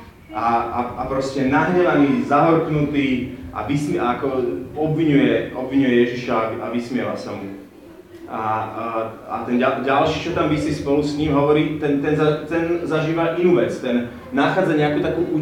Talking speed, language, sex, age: 145 wpm, Slovak, male, 30-49